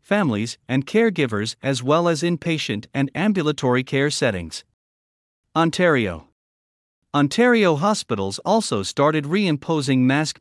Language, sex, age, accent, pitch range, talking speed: English, male, 50-69, American, 115-165 Hz, 105 wpm